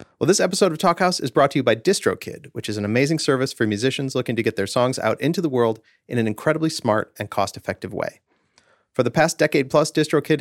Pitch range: 105-150 Hz